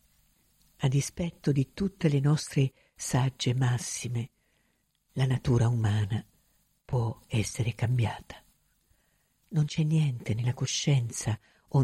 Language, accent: Italian, native